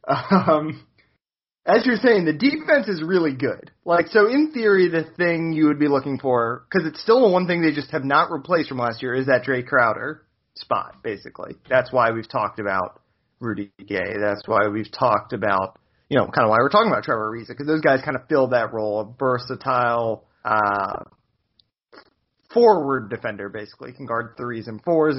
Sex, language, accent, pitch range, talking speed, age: male, English, American, 120-170 Hz, 195 wpm, 30-49